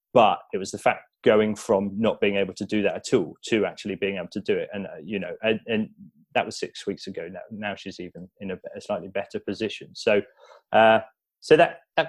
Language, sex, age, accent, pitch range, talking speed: English, male, 20-39, British, 95-110 Hz, 235 wpm